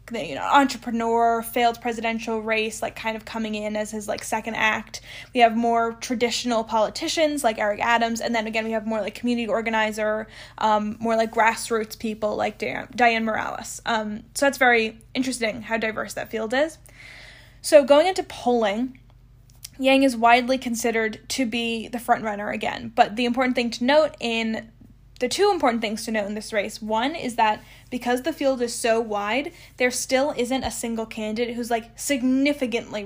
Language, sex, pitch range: English, female, 220-245 Hz